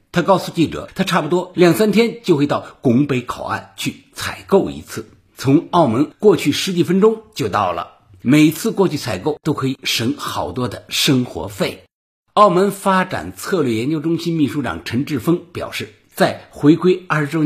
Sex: male